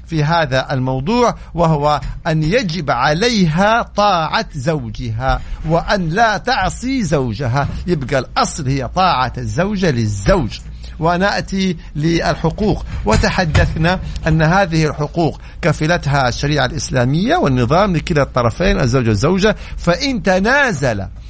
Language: Arabic